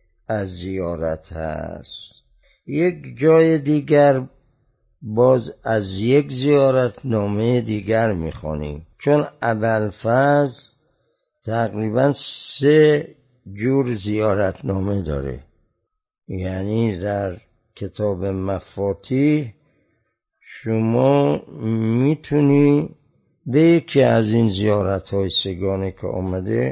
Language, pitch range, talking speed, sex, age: Persian, 100-140 Hz, 75 wpm, male, 60-79